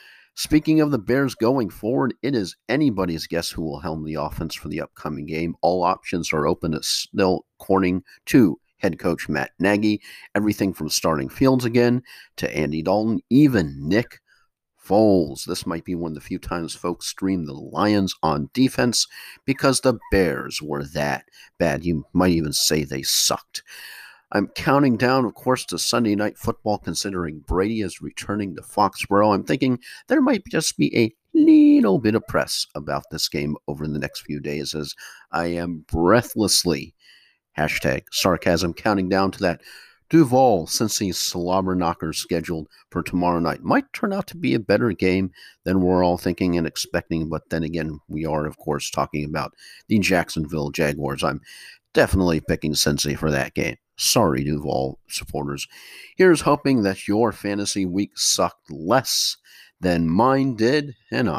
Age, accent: 50-69, American